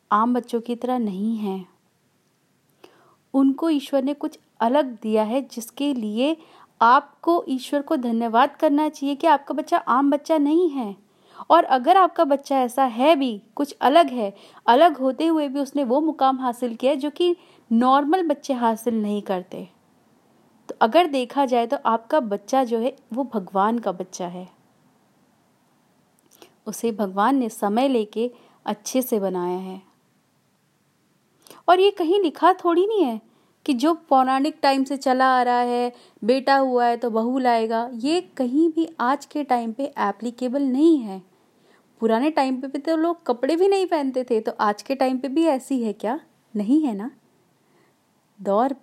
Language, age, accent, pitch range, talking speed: Hindi, 30-49, native, 225-295 Hz, 165 wpm